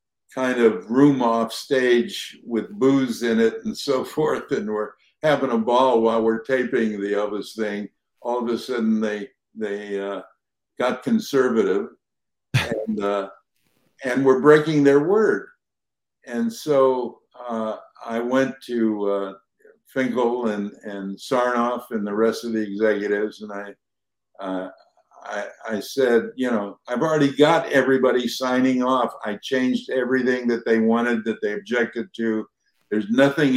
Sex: male